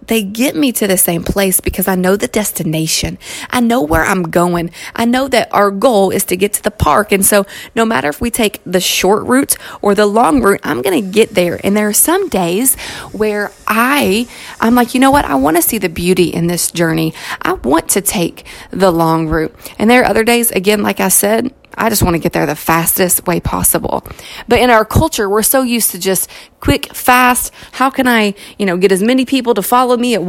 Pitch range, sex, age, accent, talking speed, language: 190-245 Hz, female, 30-49, American, 235 wpm, English